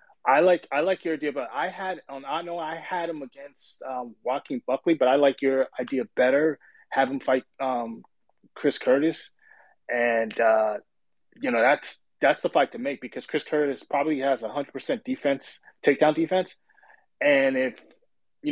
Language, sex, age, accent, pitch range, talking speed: English, male, 20-39, American, 130-165 Hz, 180 wpm